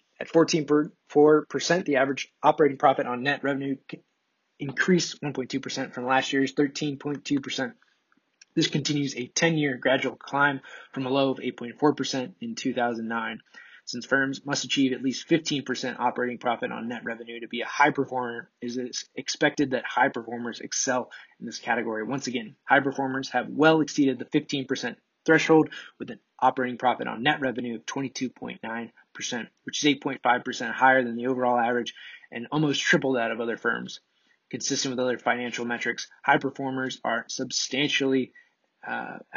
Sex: male